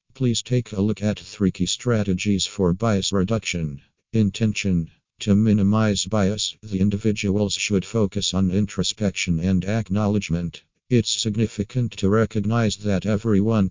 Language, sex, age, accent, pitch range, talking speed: English, male, 50-69, American, 95-110 Hz, 125 wpm